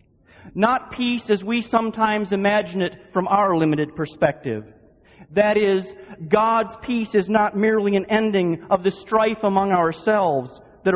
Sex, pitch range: male, 150-210 Hz